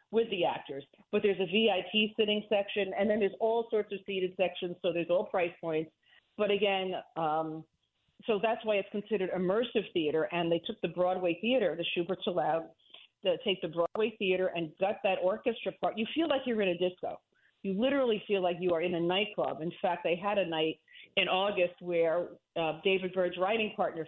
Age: 50-69